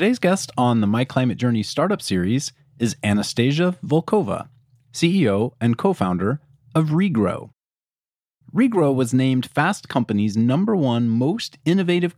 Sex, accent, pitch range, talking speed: male, American, 115-165 Hz, 130 wpm